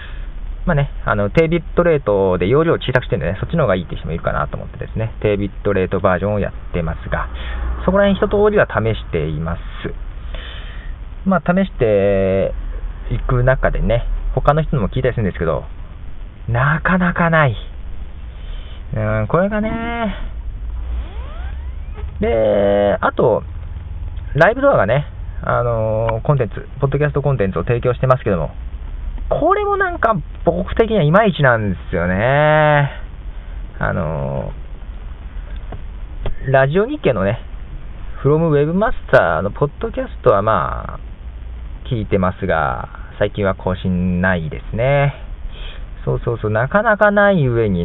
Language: Japanese